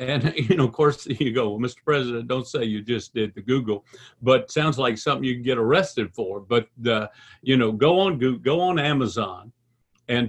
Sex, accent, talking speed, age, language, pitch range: male, American, 215 wpm, 50-69, English, 120-150 Hz